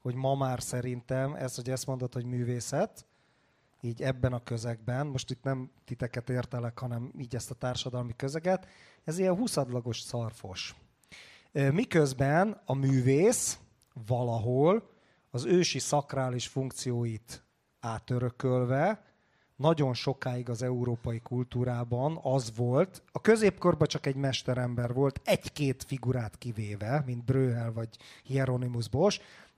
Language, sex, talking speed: Hungarian, male, 120 wpm